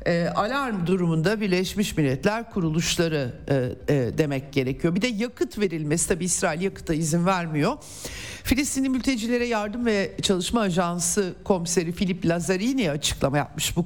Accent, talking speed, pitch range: native, 135 wpm, 155-220 Hz